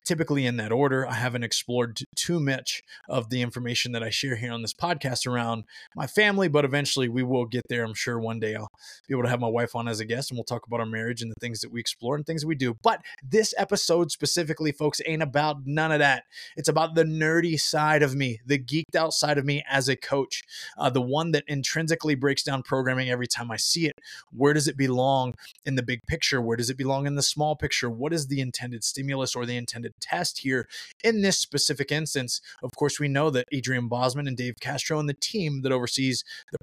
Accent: American